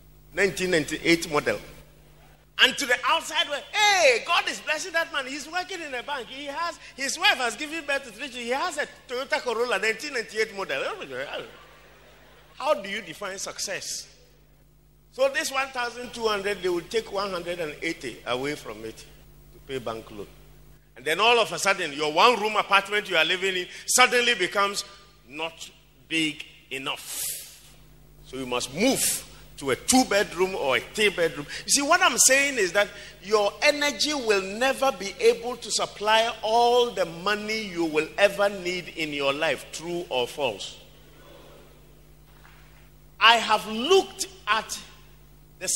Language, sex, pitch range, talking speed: English, male, 160-255 Hz, 150 wpm